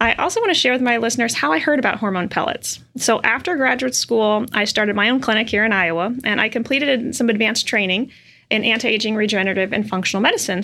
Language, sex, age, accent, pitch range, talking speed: English, female, 30-49, American, 215-270 Hz, 215 wpm